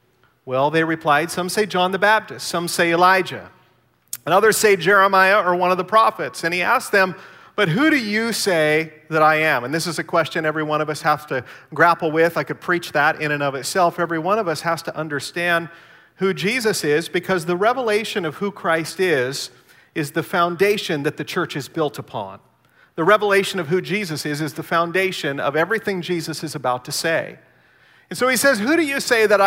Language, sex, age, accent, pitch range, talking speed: English, male, 40-59, American, 160-210 Hz, 210 wpm